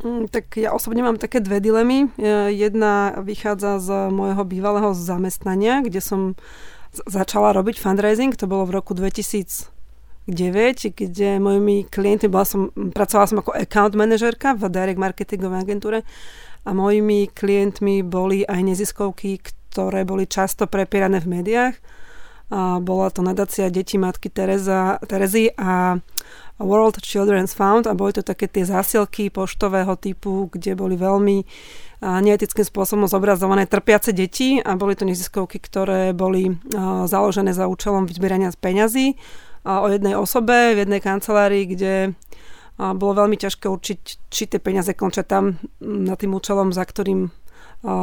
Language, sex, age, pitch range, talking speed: Slovak, female, 30-49, 190-210 Hz, 135 wpm